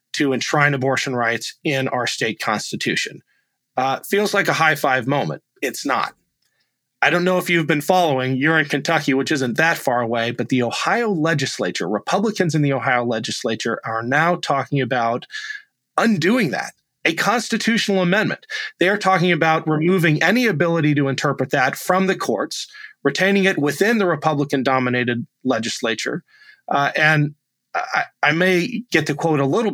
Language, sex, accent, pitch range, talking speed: English, male, American, 130-170 Hz, 160 wpm